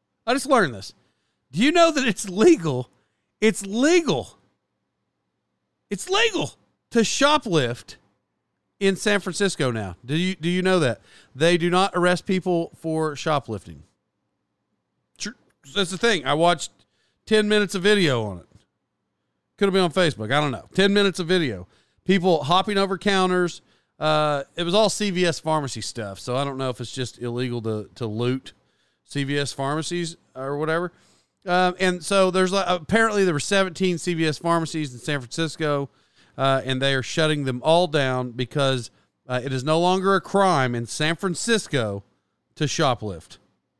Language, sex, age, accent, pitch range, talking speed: English, male, 40-59, American, 130-195 Hz, 160 wpm